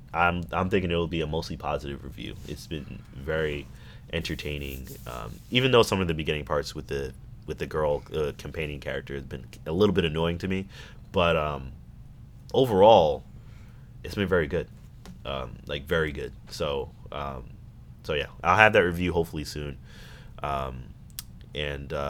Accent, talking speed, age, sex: American, 170 wpm, 30-49, male